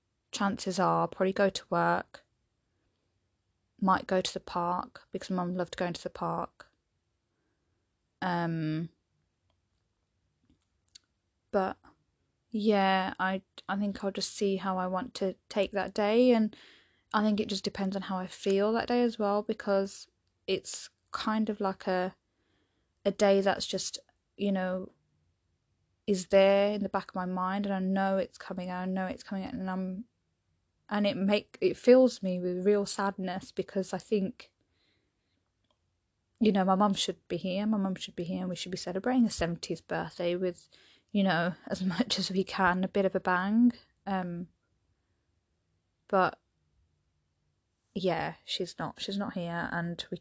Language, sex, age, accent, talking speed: English, female, 10-29, British, 165 wpm